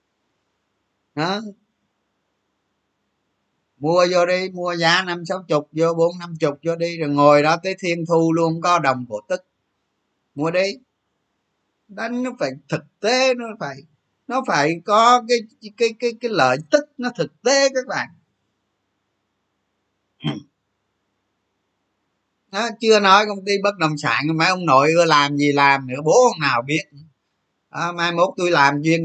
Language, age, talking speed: Vietnamese, 20-39, 155 wpm